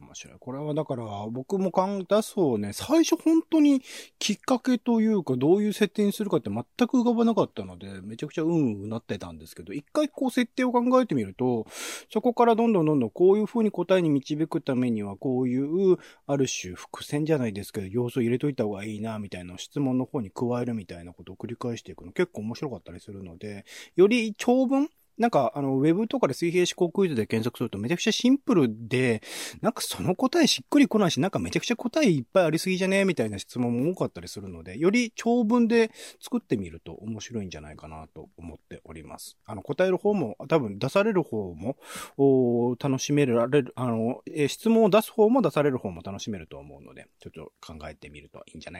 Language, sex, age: Japanese, male, 30-49